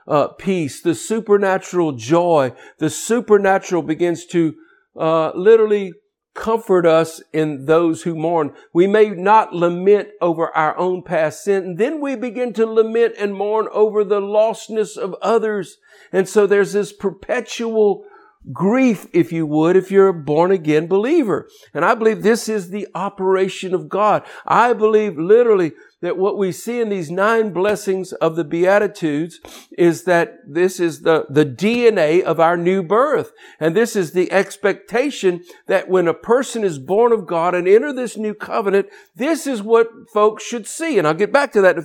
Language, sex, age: English, male, 50-69